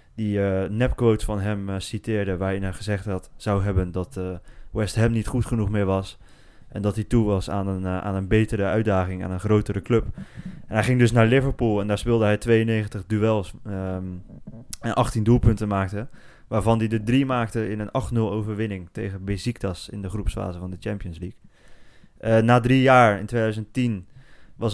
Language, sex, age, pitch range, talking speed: Dutch, male, 20-39, 95-110 Hz, 195 wpm